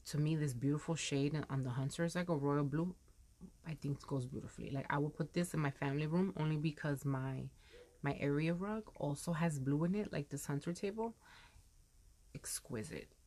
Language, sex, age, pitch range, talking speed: English, female, 30-49, 140-170 Hz, 195 wpm